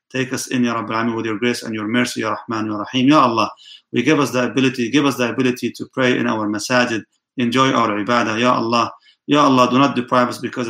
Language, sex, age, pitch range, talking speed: English, male, 30-49, 115-135 Hz, 240 wpm